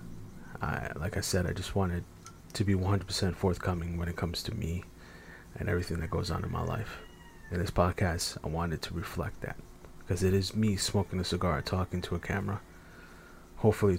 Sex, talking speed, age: male, 185 wpm, 30-49